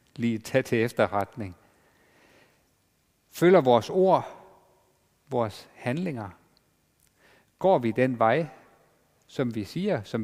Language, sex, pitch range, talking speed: Danish, male, 115-180 Hz, 100 wpm